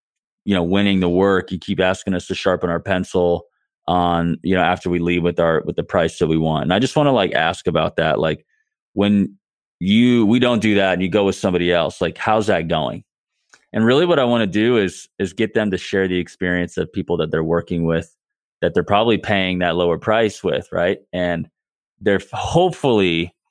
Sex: male